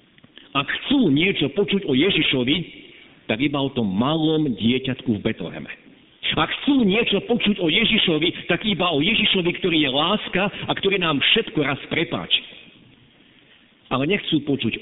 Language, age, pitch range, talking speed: Slovak, 50-69, 135-195 Hz, 145 wpm